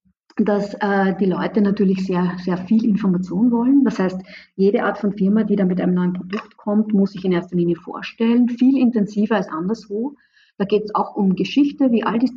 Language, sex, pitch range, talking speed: German, female, 185-225 Hz, 205 wpm